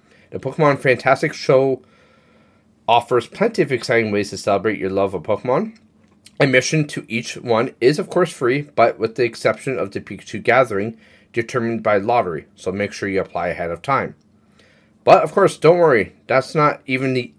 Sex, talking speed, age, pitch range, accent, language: male, 175 wpm, 30-49, 115-170 Hz, American, English